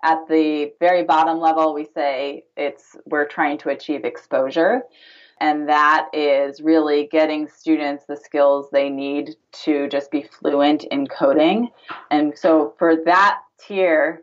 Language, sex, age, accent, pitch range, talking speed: English, female, 20-39, American, 145-165 Hz, 145 wpm